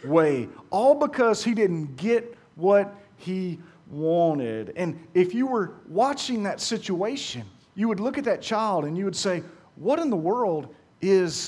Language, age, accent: English, 40-59, American